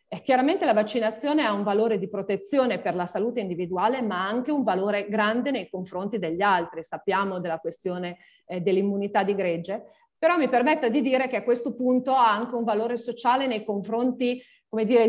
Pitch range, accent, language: 190-240 Hz, native, Italian